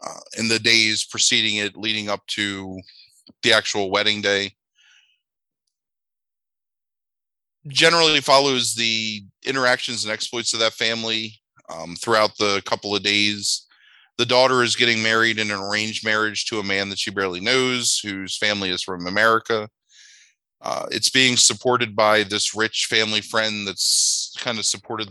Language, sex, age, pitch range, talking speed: English, male, 20-39, 100-115 Hz, 150 wpm